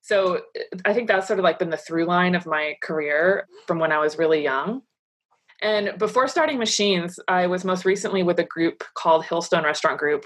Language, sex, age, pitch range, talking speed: English, female, 20-39, 155-190 Hz, 205 wpm